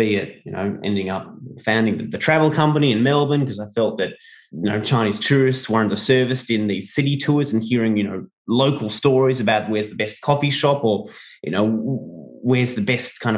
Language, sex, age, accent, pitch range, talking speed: English, male, 30-49, Australian, 105-130 Hz, 200 wpm